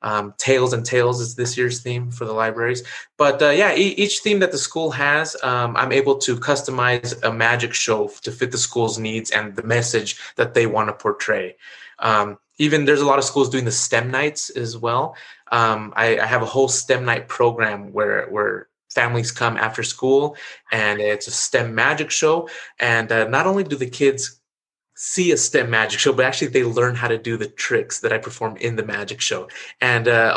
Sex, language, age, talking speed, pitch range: male, English, 20-39, 205 wpm, 115-135 Hz